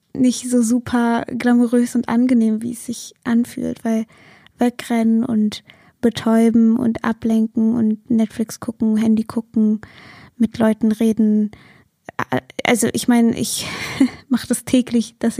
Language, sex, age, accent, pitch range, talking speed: German, female, 20-39, German, 220-240 Hz, 125 wpm